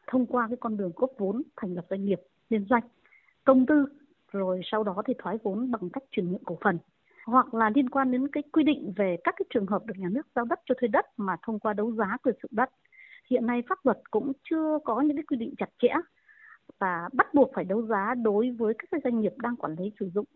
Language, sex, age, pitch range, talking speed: Vietnamese, female, 20-39, 215-280 Hz, 255 wpm